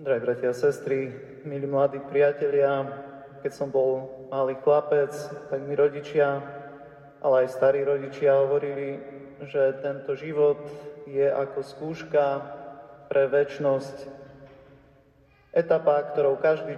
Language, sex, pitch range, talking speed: Slovak, male, 140-150 Hz, 110 wpm